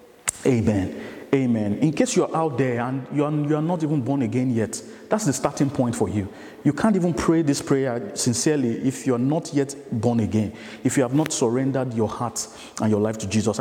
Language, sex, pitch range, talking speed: English, male, 110-150 Hz, 205 wpm